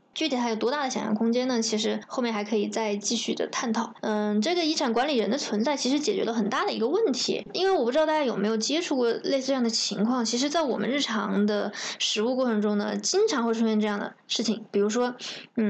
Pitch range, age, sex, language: 215-275 Hz, 20-39, female, Chinese